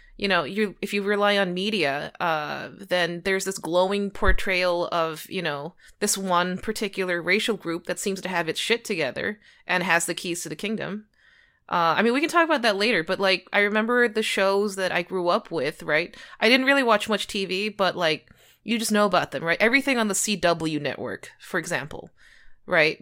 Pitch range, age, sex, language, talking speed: 175-215 Hz, 20-39, female, English, 205 wpm